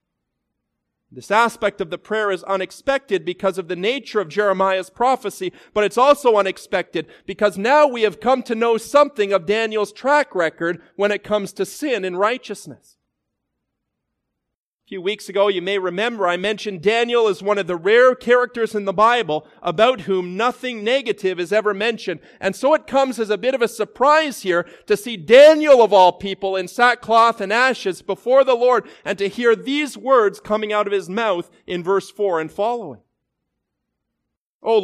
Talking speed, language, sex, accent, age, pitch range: 175 wpm, English, male, American, 40-59, 195-240 Hz